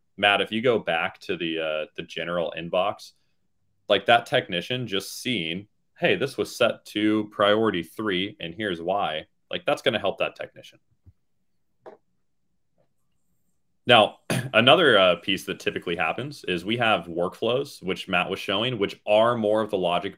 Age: 20-39